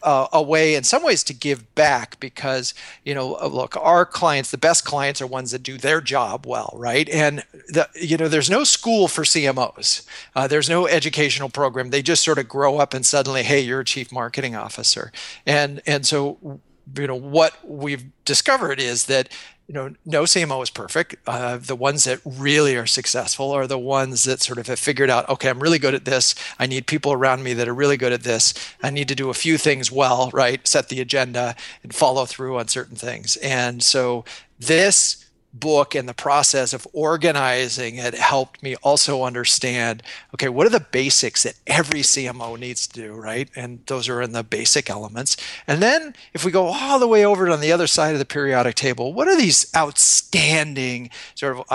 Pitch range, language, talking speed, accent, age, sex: 125-150 Hz, English, 205 wpm, American, 40-59, male